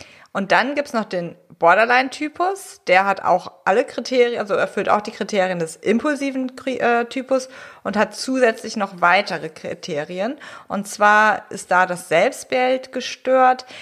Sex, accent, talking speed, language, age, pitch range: female, German, 145 wpm, German, 30-49, 185-240 Hz